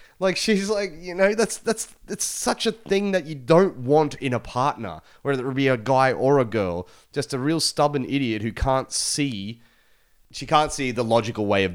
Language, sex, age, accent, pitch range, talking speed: English, male, 30-49, Australian, 105-145 Hz, 210 wpm